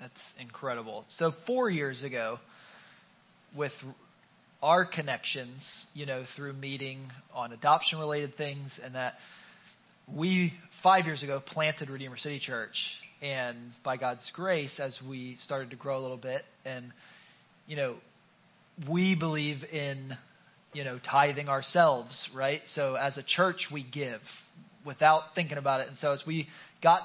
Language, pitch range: English, 135-165 Hz